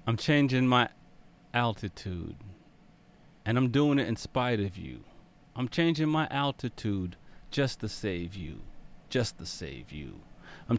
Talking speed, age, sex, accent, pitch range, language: 140 wpm, 40-59, male, American, 120-145 Hz, English